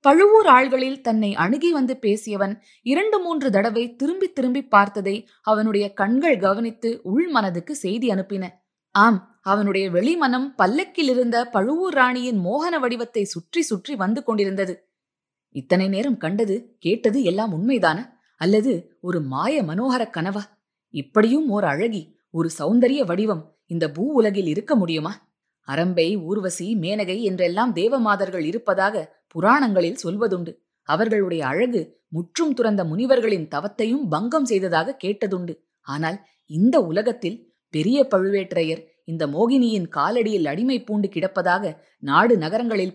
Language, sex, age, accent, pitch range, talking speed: Tamil, female, 20-39, native, 180-240 Hz, 115 wpm